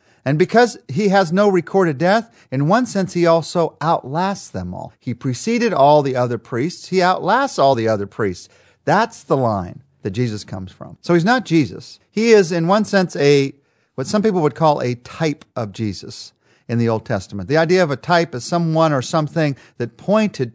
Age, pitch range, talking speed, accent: 40-59, 120-165 Hz, 200 wpm, American